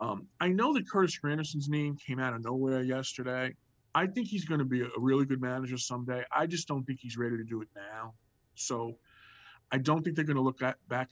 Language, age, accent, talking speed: English, 50-69, American, 230 wpm